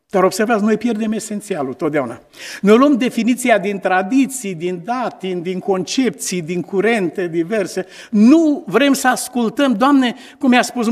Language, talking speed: Romanian, 150 wpm